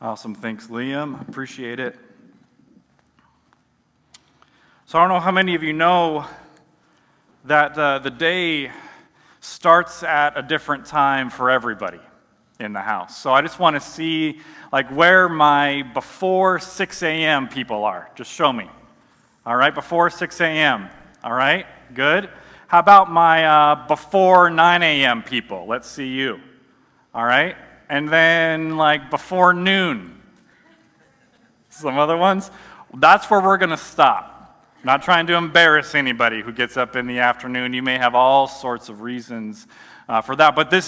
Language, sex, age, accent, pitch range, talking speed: English, male, 40-59, American, 135-175 Hz, 155 wpm